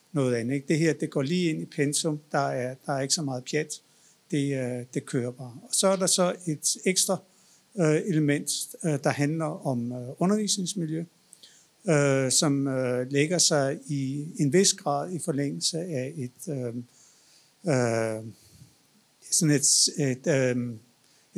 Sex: male